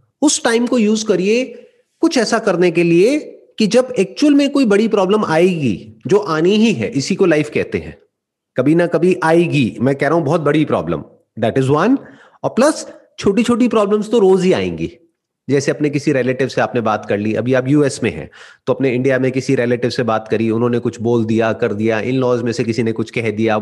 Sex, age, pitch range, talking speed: male, 30-49, 130-220 Hz, 225 wpm